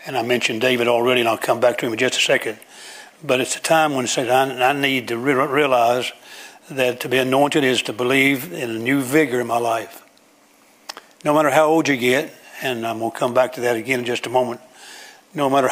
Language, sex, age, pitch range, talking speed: English, male, 60-79, 125-145 Hz, 225 wpm